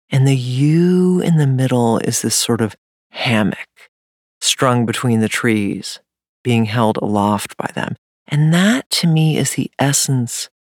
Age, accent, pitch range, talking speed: 40-59, American, 115-170 Hz, 150 wpm